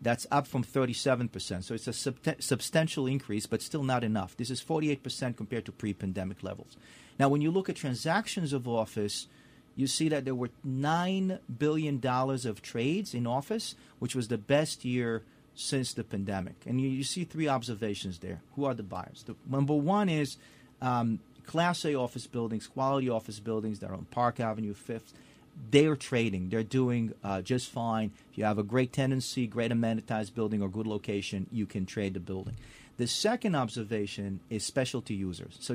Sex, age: male, 40-59